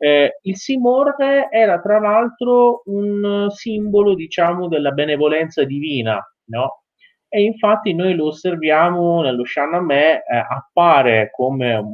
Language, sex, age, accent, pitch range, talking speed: Italian, male, 30-49, native, 120-190 Hz, 115 wpm